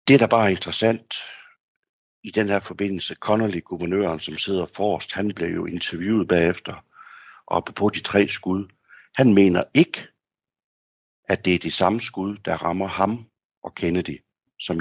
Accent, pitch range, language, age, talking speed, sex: native, 90-115 Hz, Danish, 60-79, 160 wpm, male